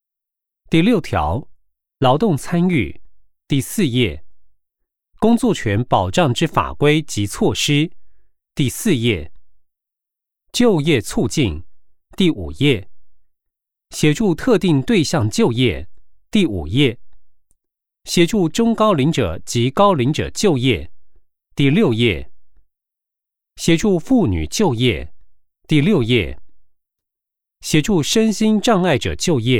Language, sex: Chinese, male